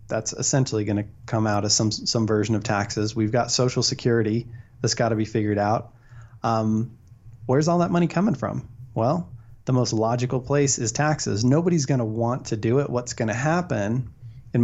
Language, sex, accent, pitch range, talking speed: English, male, American, 110-130 Hz, 195 wpm